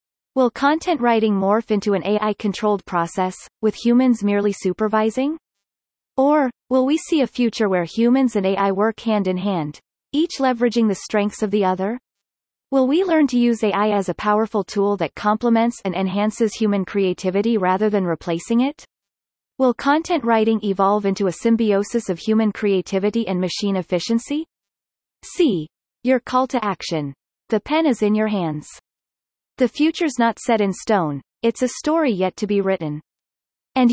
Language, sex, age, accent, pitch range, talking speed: English, female, 30-49, American, 190-250 Hz, 160 wpm